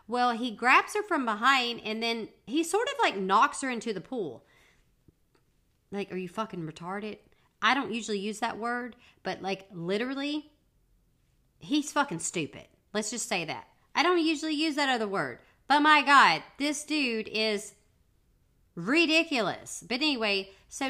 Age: 40-59